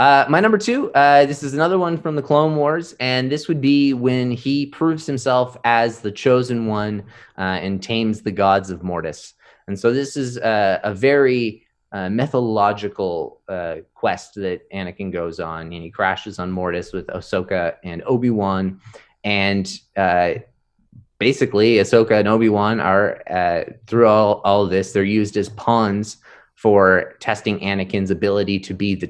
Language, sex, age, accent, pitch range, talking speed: English, male, 20-39, American, 95-115 Hz, 165 wpm